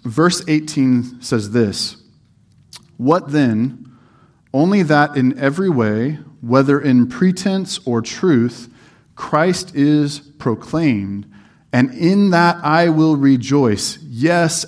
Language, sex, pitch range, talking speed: English, male, 120-150 Hz, 105 wpm